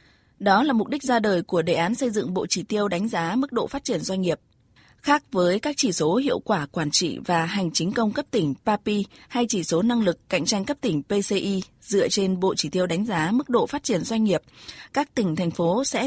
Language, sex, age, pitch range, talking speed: Vietnamese, female, 20-39, 175-235 Hz, 245 wpm